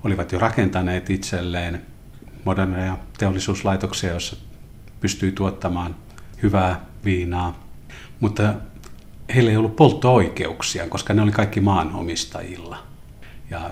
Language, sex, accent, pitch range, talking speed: Finnish, male, native, 85-100 Hz, 95 wpm